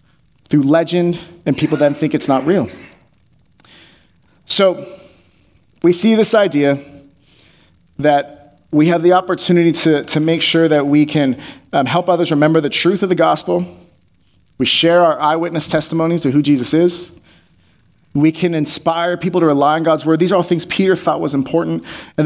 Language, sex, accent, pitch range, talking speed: English, male, American, 145-190 Hz, 165 wpm